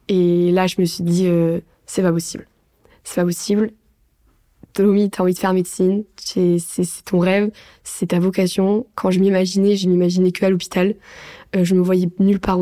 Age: 20-39